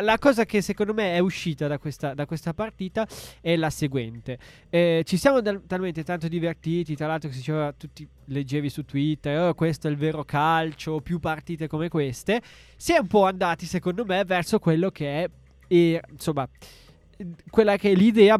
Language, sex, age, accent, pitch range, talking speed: Italian, male, 20-39, native, 145-180 Hz, 185 wpm